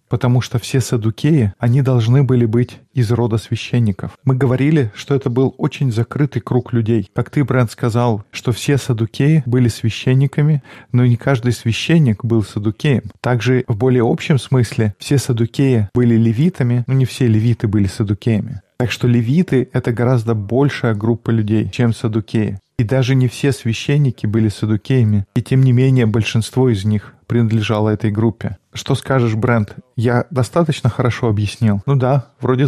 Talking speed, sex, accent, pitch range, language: 160 wpm, male, native, 115-130 Hz, Russian